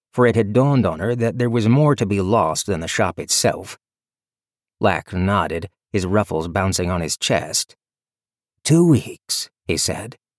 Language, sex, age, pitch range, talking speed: English, male, 40-59, 100-130 Hz, 170 wpm